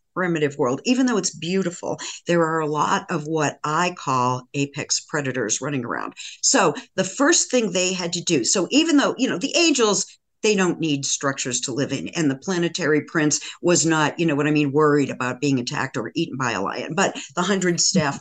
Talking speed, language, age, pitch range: 210 wpm, English, 50-69, 150-210 Hz